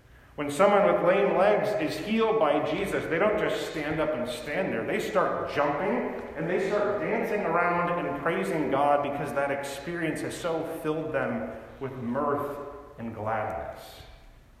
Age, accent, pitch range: 40-59, American, 130-165 Hz